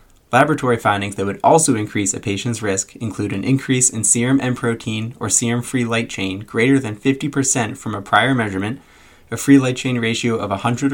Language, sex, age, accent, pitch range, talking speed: English, male, 20-39, American, 105-130 Hz, 185 wpm